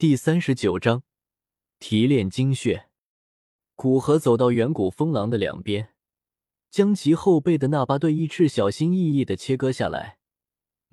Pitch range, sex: 110-155 Hz, male